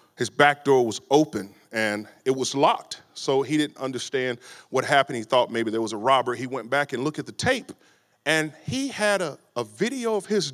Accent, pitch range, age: American, 135-200 Hz, 40-59